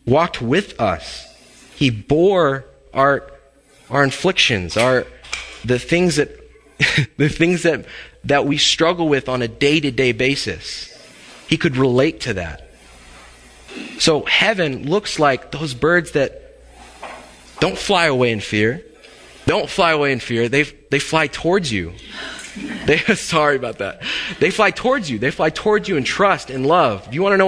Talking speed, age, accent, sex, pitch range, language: 155 wpm, 20-39, American, male, 115-155 Hz, English